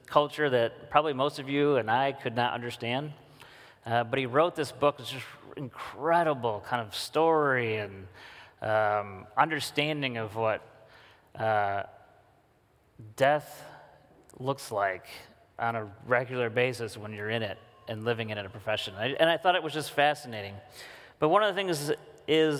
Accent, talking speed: American, 165 wpm